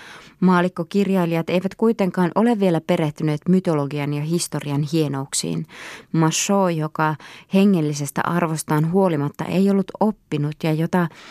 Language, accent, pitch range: Finnish, native, 155-195 Hz